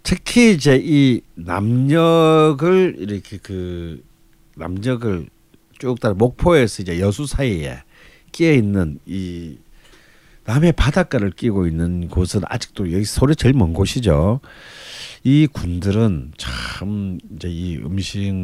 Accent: native